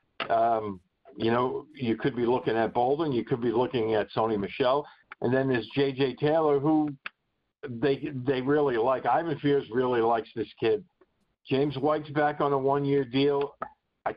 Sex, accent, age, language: male, American, 50-69, English